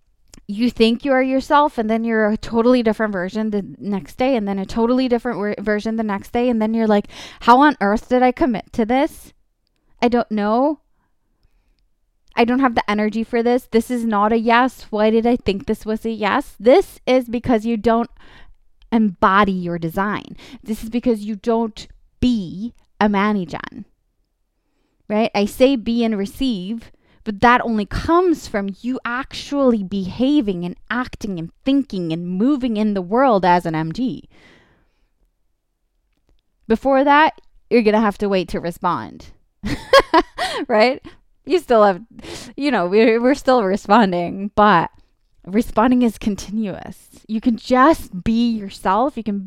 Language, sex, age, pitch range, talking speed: English, female, 20-39, 205-250 Hz, 160 wpm